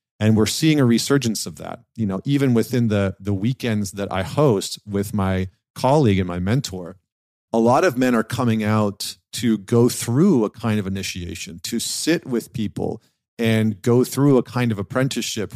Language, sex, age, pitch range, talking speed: English, male, 40-59, 100-125 Hz, 185 wpm